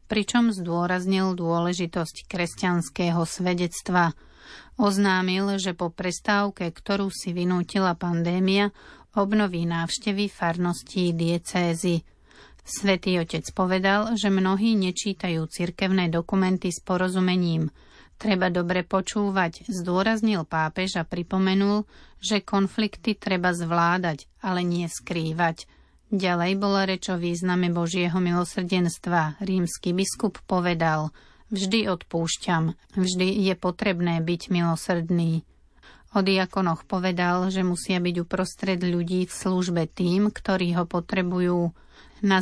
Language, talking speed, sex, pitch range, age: Slovak, 100 wpm, female, 175-195 Hz, 30-49